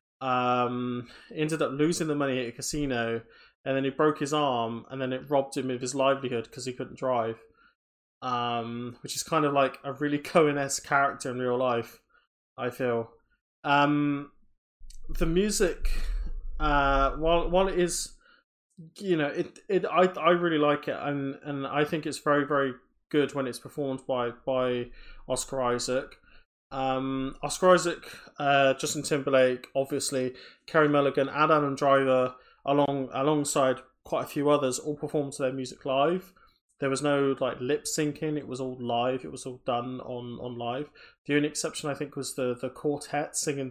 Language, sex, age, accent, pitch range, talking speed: English, male, 20-39, British, 125-150 Hz, 170 wpm